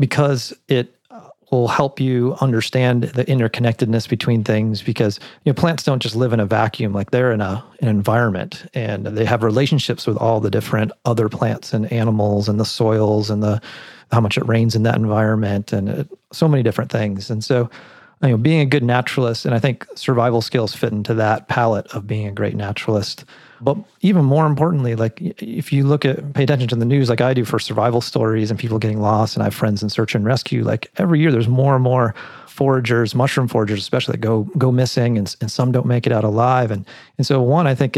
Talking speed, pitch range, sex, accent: 220 wpm, 110-130 Hz, male, American